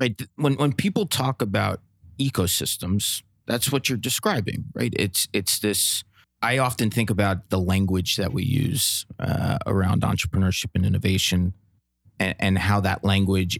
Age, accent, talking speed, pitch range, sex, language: 30-49, American, 150 wpm, 100-115 Hz, male, English